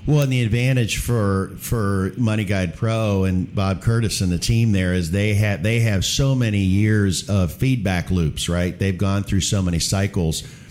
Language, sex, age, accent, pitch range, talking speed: English, male, 50-69, American, 95-120 Hz, 190 wpm